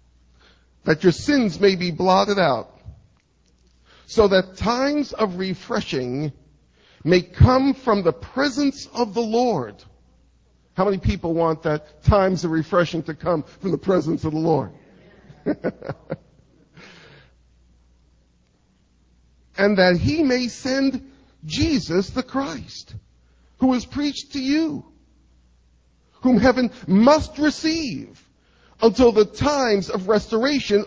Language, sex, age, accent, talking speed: English, male, 50-69, American, 115 wpm